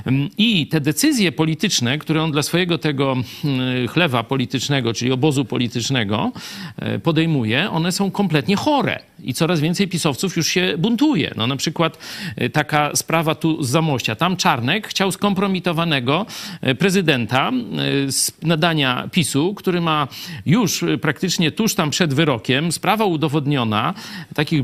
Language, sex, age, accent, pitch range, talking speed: Polish, male, 50-69, native, 140-190 Hz, 130 wpm